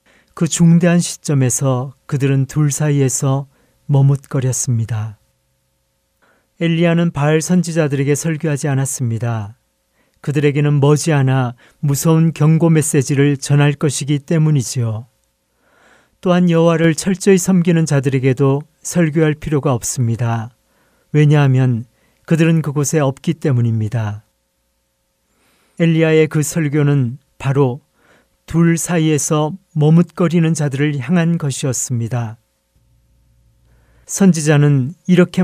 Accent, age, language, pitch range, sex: native, 40-59, Korean, 130-170 Hz, male